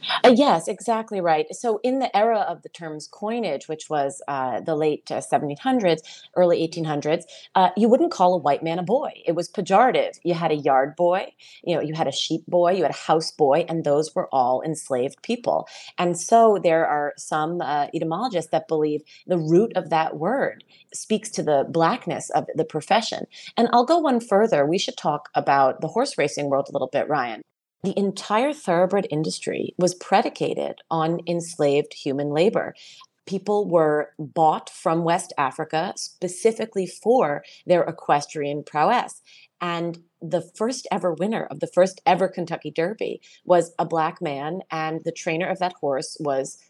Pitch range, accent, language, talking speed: 150-185 Hz, American, English, 175 wpm